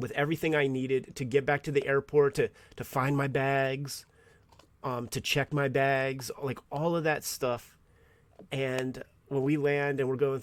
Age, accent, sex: 30-49, American, male